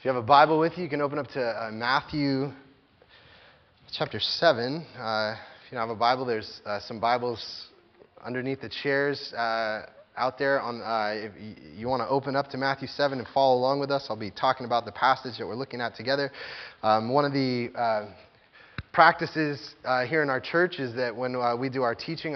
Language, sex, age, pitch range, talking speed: English, male, 20-39, 120-145 Hz, 210 wpm